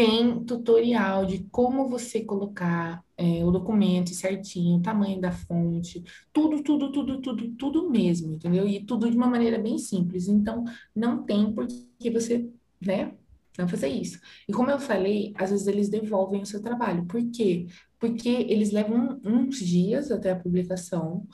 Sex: female